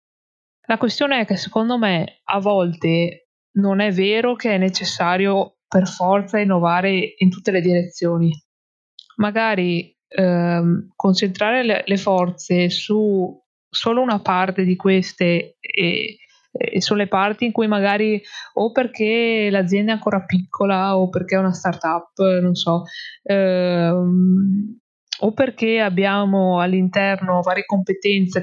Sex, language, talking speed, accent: female, Italian, 130 wpm, native